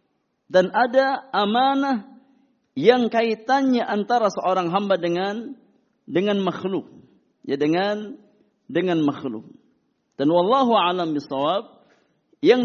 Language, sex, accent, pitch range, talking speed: Indonesian, male, native, 165-230 Hz, 90 wpm